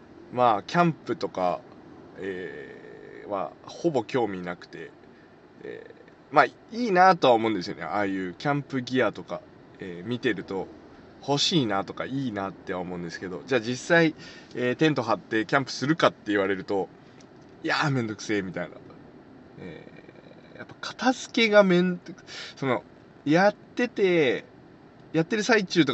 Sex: male